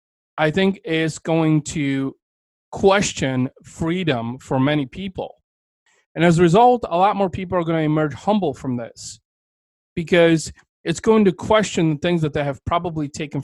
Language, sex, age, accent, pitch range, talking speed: English, male, 30-49, American, 140-175 Hz, 165 wpm